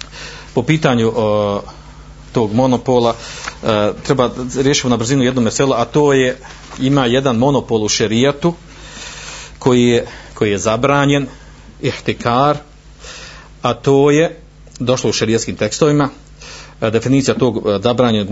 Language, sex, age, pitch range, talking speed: Croatian, male, 50-69, 115-145 Hz, 120 wpm